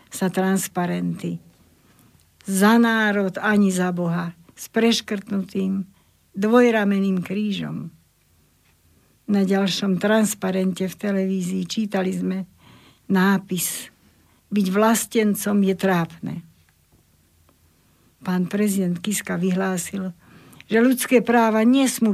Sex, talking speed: female, 85 wpm